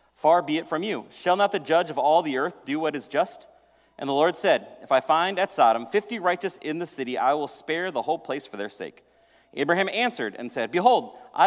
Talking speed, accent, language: 240 wpm, American, English